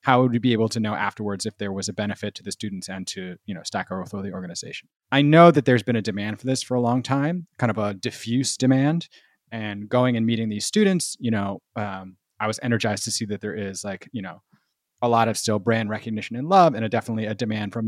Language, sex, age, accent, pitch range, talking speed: English, male, 30-49, American, 105-120 Hz, 250 wpm